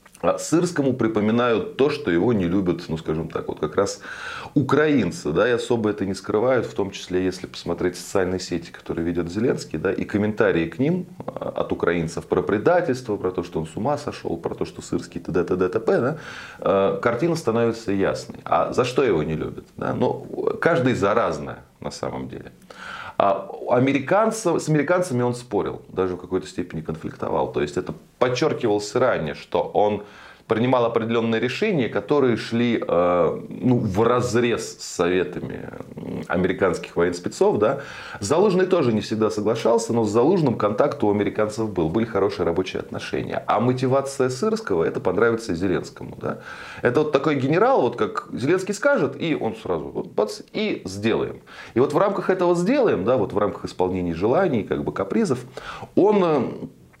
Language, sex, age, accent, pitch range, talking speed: Russian, male, 30-49, native, 95-135 Hz, 160 wpm